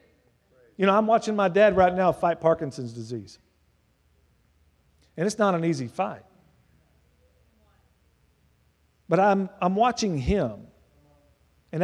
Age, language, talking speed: 50-69, English, 115 wpm